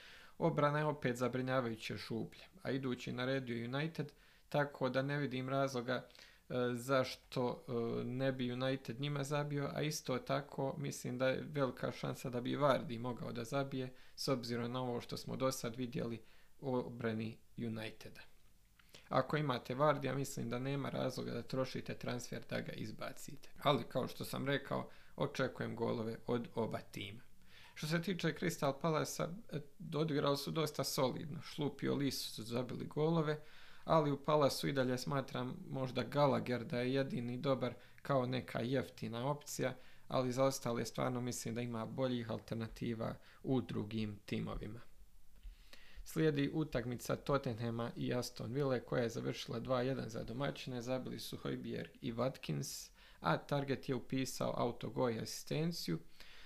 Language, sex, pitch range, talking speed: Croatian, male, 120-140 Hz, 145 wpm